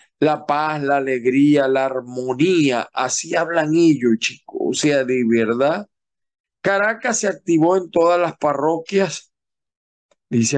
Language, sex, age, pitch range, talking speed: Spanish, male, 50-69, 130-185 Hz, 125 wpm